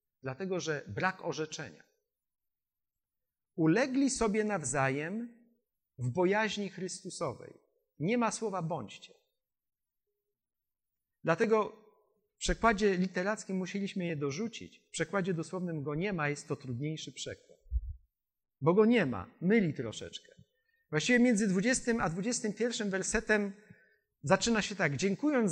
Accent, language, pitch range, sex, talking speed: native, Polish, 160-220 Hz, male, 110 wpm